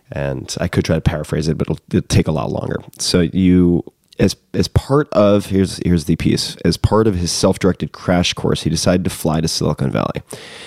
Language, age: English, 30-49